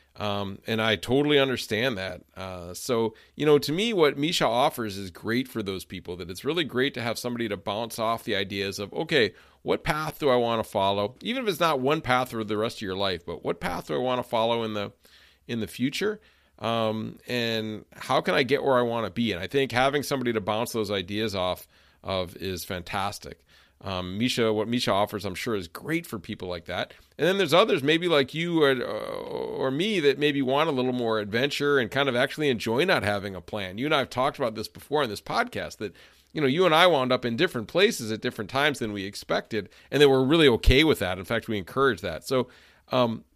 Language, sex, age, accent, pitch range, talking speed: English, male, 40-59, American, 100-135 Hz, 235 wpm